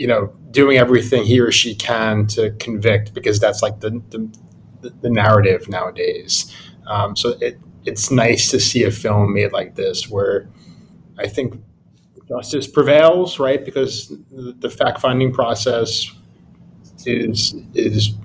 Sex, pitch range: male, 110-135 Hz